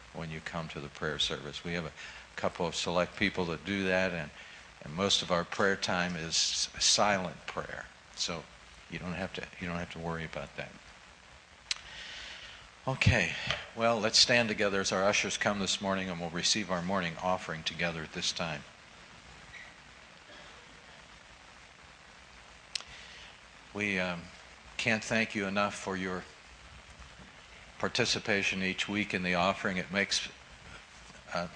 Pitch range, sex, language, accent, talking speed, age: 85-100 Hz, male, English, American, 150 wpm, 60-79